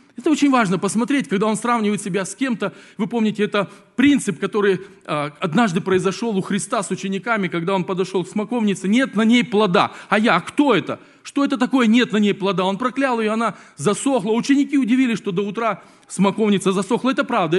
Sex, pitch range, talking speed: male, 165-220 Hz, 195 wpm